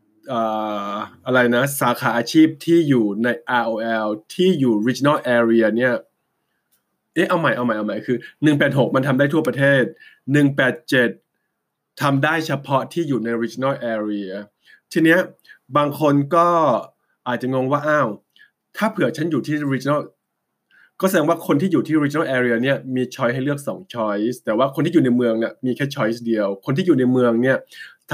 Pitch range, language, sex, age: 120-140 Hz, Thai, male, 20-39